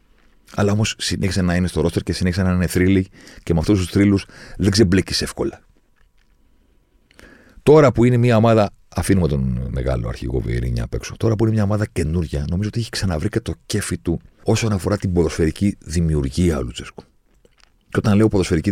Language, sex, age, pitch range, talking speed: Greek, male, 40-59, 70-100 Hz, 175 wpm